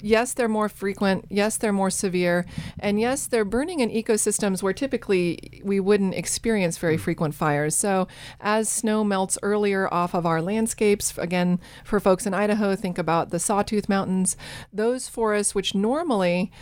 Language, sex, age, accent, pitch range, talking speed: English, female, 40-59, American, 175-210 Hz, 165 wpm